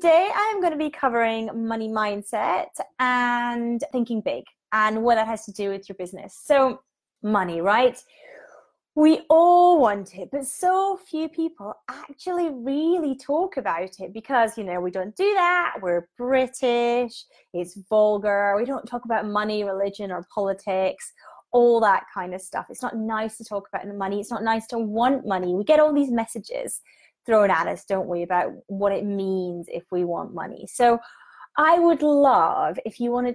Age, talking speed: 20-39, 180 wpm